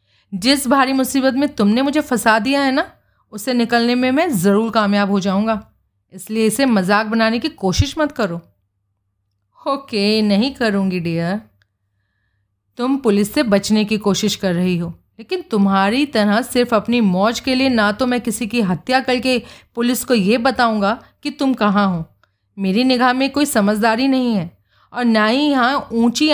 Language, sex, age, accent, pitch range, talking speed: Hindi, female, 30-49, native, 185-255 Hz, 170 wpm